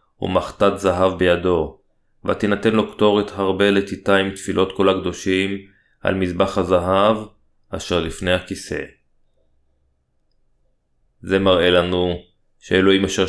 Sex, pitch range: male, 90-100 Hz